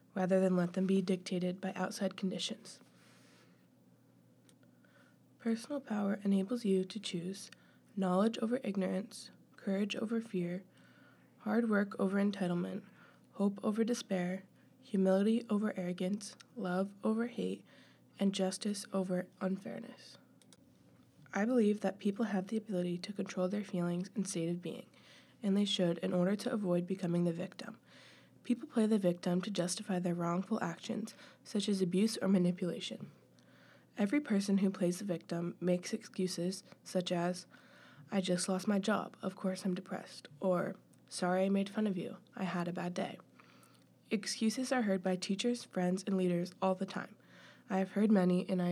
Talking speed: 155 wpm